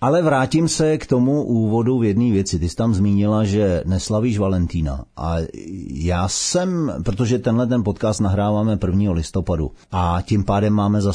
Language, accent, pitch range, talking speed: Czech, native, 90-110 Hz, 165 wpm